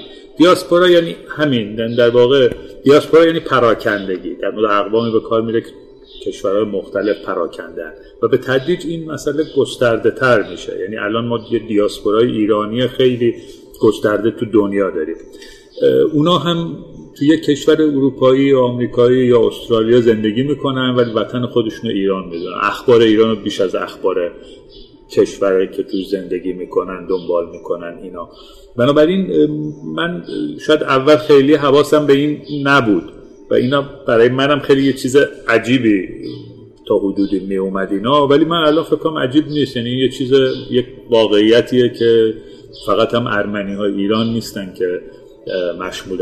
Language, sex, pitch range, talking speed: Persian, male, 110-170 Hz, 140 wpm